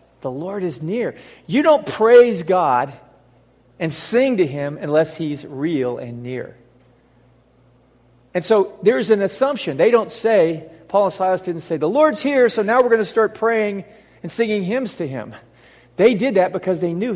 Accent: American